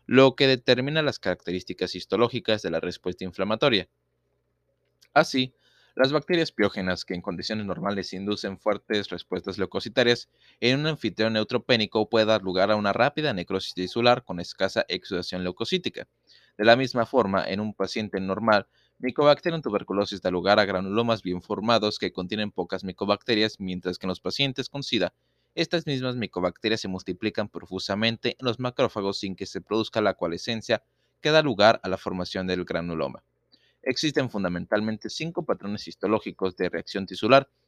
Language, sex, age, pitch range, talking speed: Spanish, male, 20-39, 95-130 Hz, 155 wpm